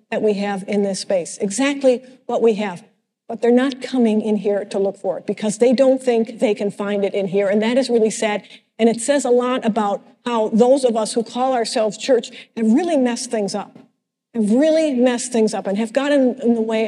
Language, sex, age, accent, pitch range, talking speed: English, female, 50-69, American, 215-265 Hz, 230 wpm